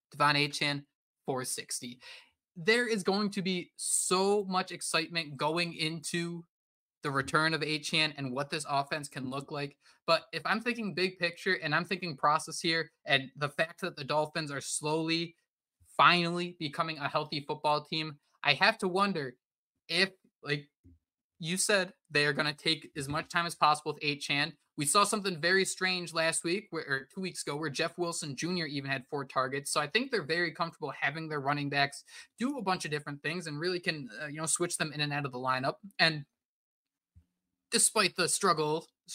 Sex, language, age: male, English, 20-39